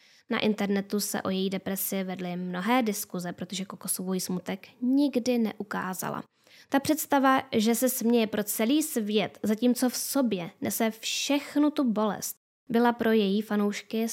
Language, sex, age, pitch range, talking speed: Czech, female, 10-29, 200-235 Hz, 140 wpm